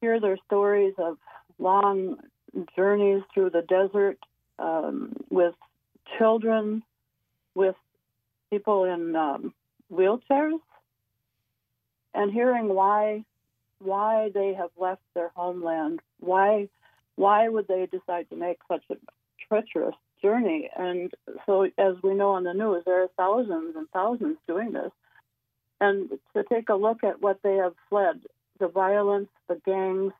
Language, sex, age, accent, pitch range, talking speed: English, female, 60-79, American, 175-210 Hz, 130 wpm